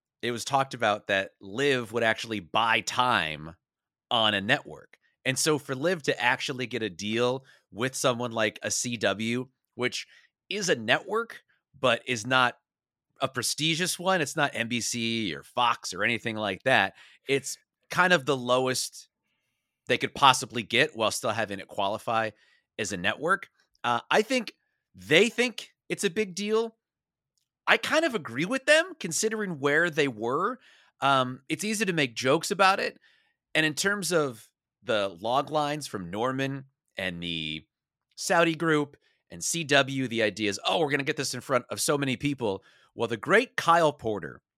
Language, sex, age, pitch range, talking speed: English, male, 30-49, 115-170 Hz, 170 wpm